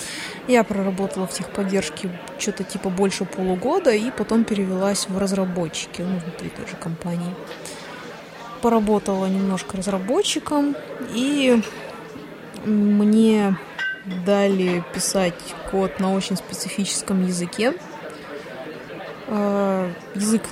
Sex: female